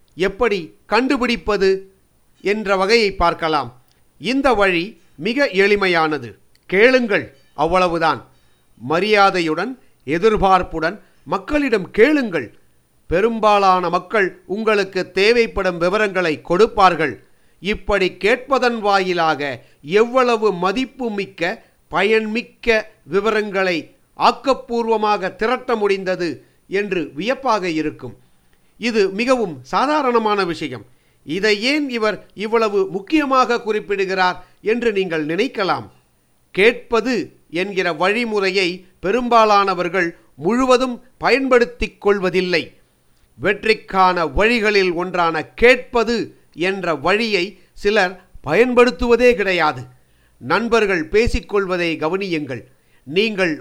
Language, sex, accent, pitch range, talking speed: Tamil, male, native, 175-225 Hz, 75 wpm